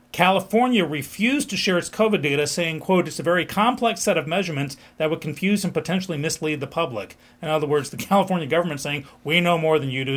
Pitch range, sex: 135-175 Hz, male